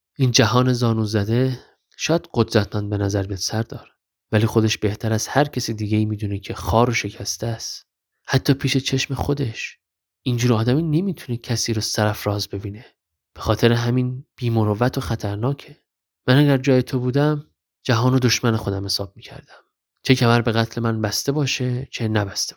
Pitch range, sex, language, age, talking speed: 105-135 Hz, male, Persian, 30-49, 170 wpm